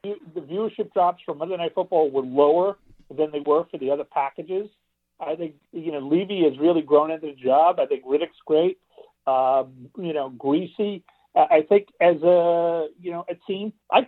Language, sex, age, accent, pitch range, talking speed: English, male, 50-69, American, 145-190 Hz, 190 wpm